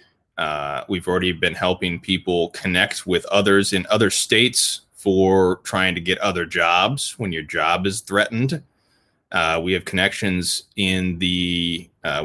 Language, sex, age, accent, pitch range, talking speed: English, male, 20-39, American, 90-110 Hz, 145 wpm